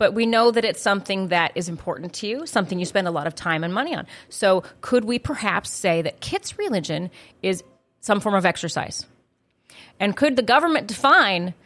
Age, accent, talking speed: 30-49, American, 200 wpm